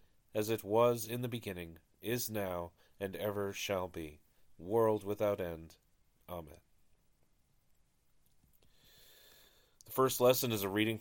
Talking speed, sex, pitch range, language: 120 wpm, male, 90-115 Hz, English